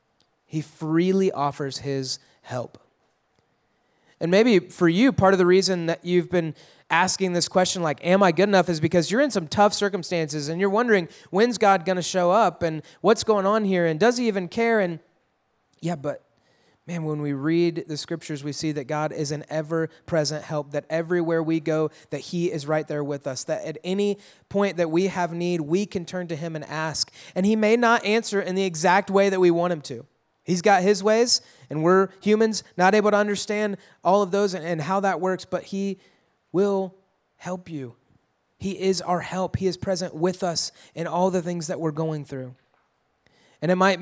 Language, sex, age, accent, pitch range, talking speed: English, male, 20-39, American, 160-195 Hz, 205 wpm